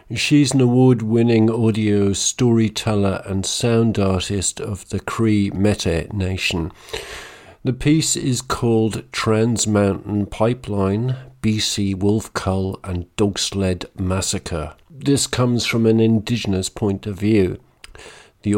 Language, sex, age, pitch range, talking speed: English, male, 50-69, 100-115 Hz, 115 wpm